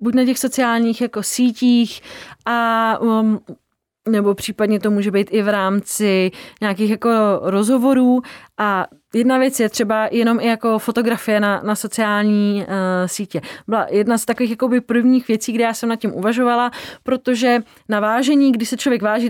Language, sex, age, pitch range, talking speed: Czech, female, 30-49, 215-250 Hz, 165 wpm